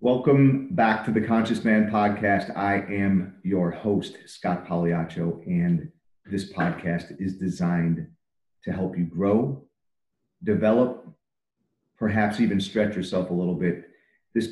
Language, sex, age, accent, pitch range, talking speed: English, male, 40-59, American, 95-115 Hz, 130 wpm